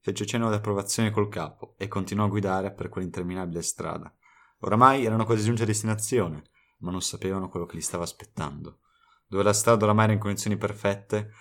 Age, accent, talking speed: 30-49, native, 185 wpm